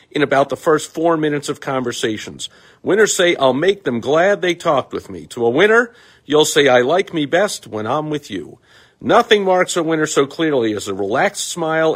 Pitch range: 120-170 Hz